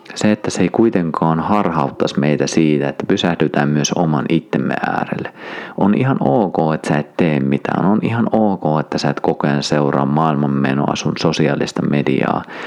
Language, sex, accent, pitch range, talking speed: Finnish, male, native, 70-80 Hz, 165 wpm